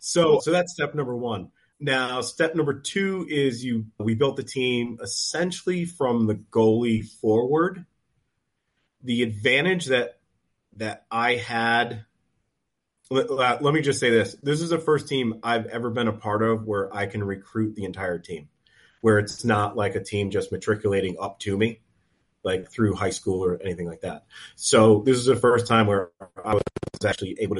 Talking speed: 175 wpm